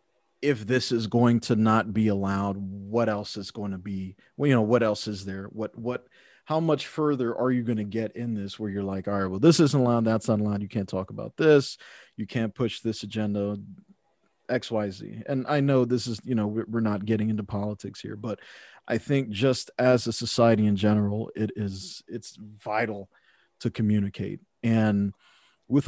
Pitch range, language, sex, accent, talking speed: 105-125 Hz, English, male, American, 205 wpm